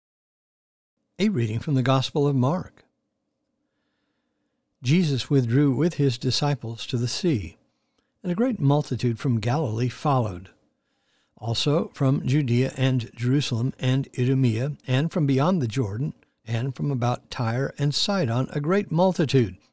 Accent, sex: American, male